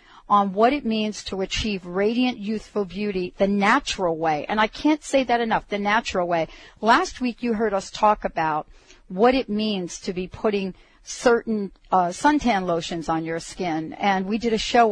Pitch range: 180-230 Hz